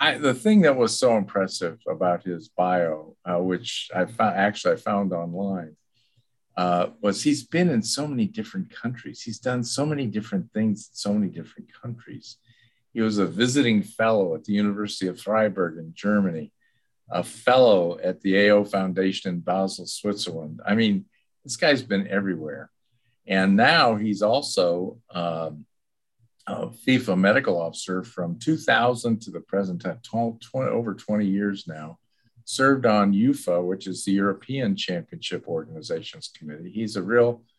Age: 50-69